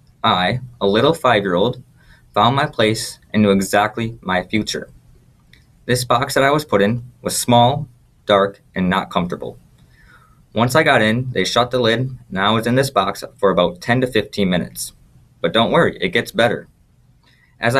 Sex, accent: male, American